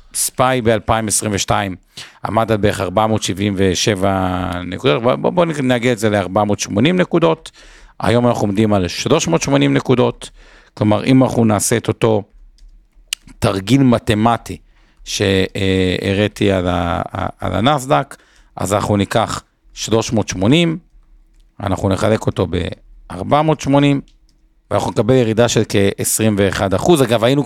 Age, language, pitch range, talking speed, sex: 50-69, Hebrew, 95-120 Hz, 105 wpm, male